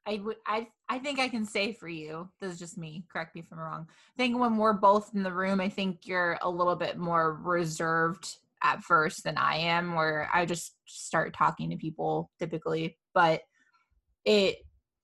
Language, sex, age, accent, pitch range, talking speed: English, female, 20-39, American, 175-230 Hz, 200 wpm